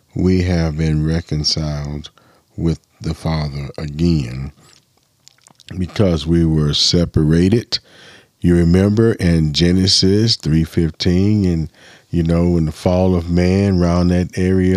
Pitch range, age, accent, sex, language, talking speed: 85-100 Hz, 40-59, American, male, English, 115 wpm